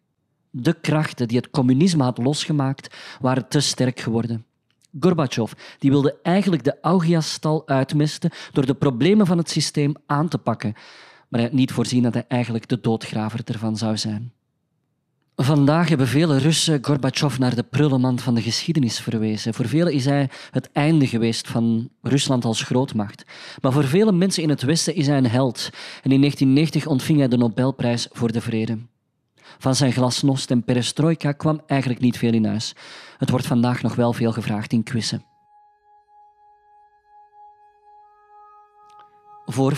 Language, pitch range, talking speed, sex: Dutch, 125-160 Hz, 160 wpm, male